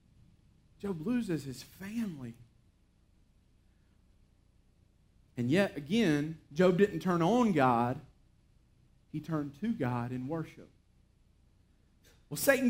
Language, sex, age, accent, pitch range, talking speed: English, male, 40-59, American, 145-240 Hz, 95 wpm